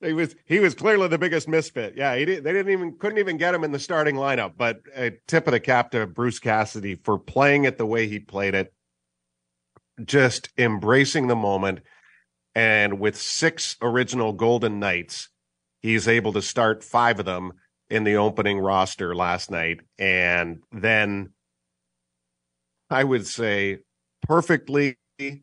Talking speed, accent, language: 160 wpm, American, English